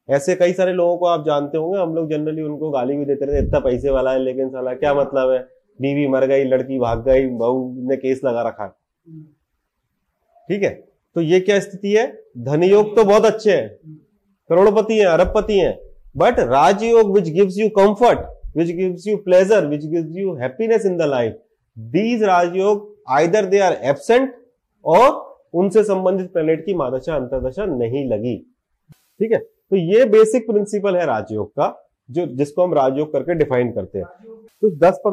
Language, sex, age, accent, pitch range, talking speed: Hindi, male, 30-49, native, 140-200 Hz, 160 wpm